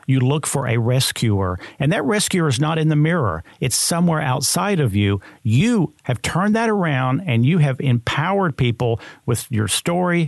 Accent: American